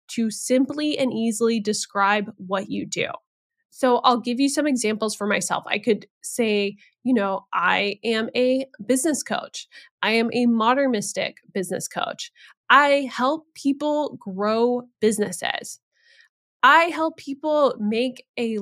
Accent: American